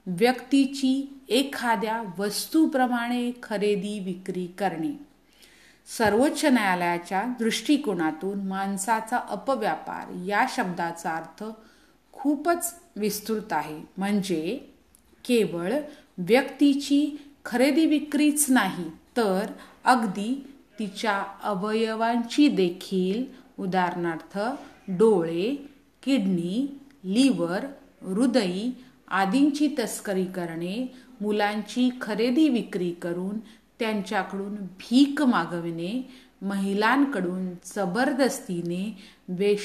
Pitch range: 190-260 Hz